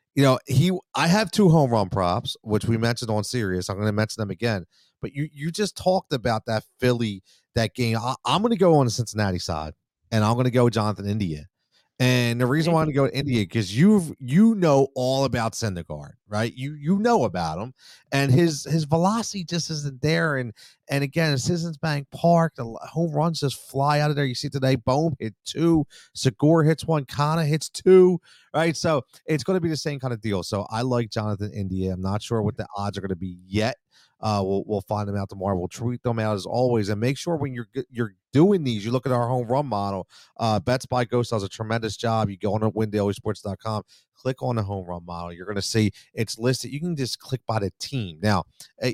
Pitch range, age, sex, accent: 105-140 Hz, 40-59, male, American